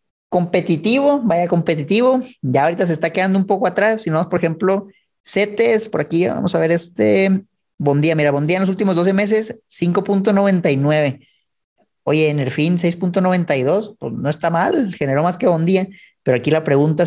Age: 30-49